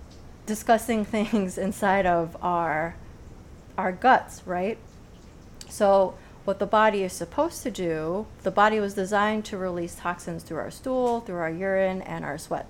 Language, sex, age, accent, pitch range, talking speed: English, female, 30-49, American, 175-205 Hz, 150 wpm